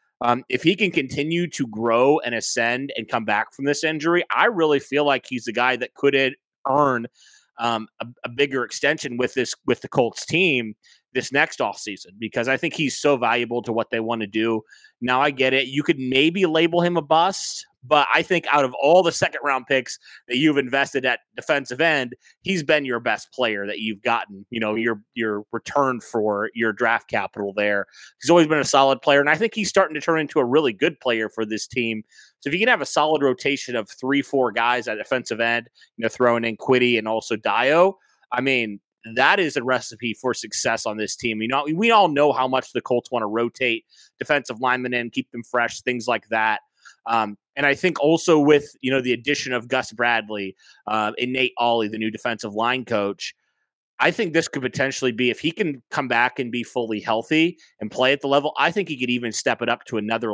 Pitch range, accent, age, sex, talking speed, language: 115-145 Hz, American, 30-49, male, 225 wpm, English